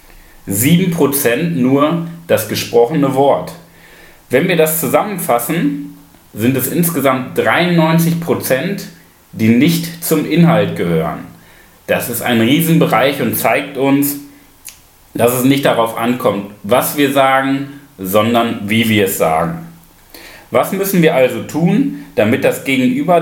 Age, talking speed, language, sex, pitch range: 30-49, 115 wpm, German, male, 105-155 Hz